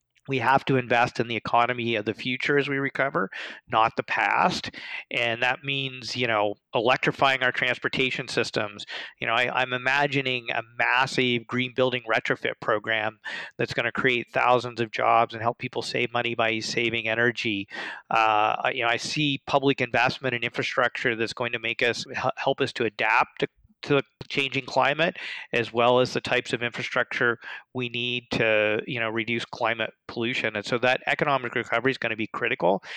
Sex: male